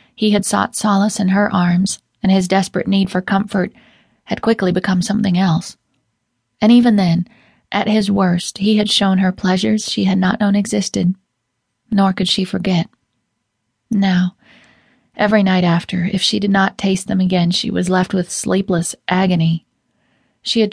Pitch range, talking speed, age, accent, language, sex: 180-205 Hz, 165 wpm, 30-49, American, English, female